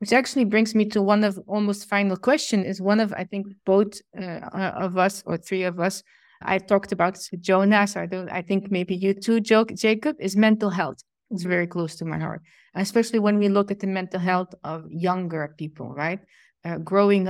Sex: female